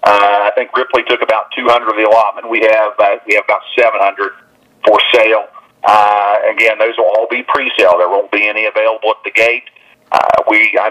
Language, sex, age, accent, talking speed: English, male, 40-59, American, 220 wpm